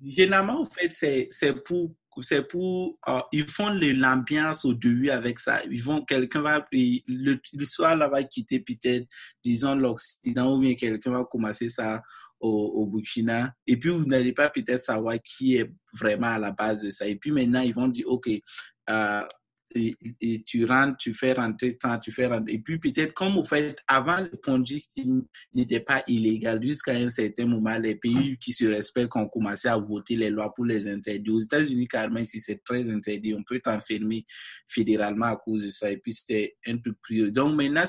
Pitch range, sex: 110-135 Hz, male